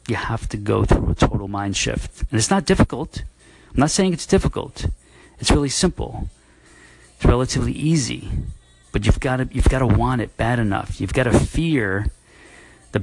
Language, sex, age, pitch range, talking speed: English, male, 40-59, 100-135 Hz, 185 wpm